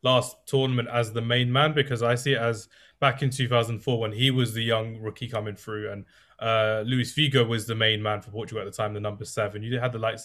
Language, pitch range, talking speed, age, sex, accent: English, 105-125 Hz, 245 wpm, 20-39, male, British